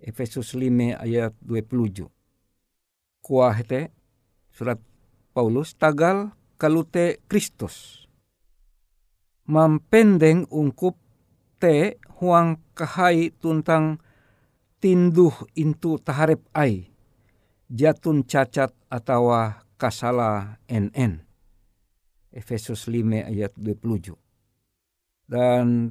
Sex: male